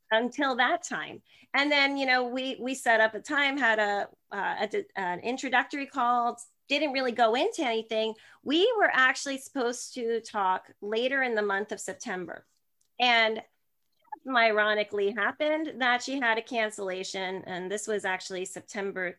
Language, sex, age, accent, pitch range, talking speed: English, female, 30-49, American, 190-245 Hz, 160 wpm